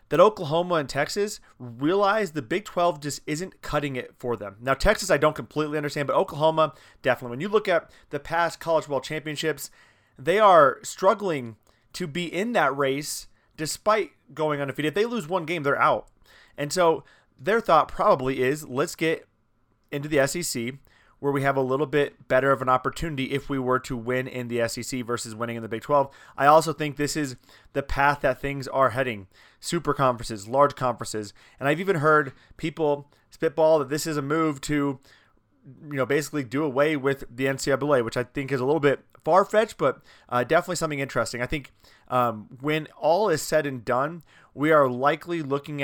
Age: 30-49